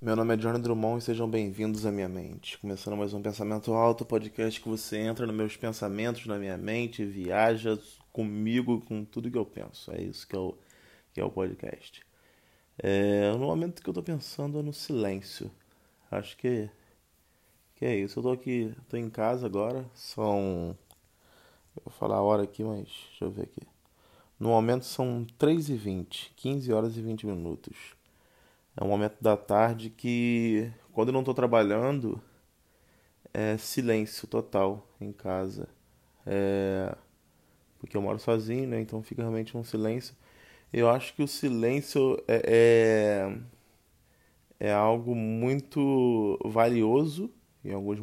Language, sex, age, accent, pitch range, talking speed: Portuguese, male, 20-39, Brazilian, 105-125 Hz, 150 wpm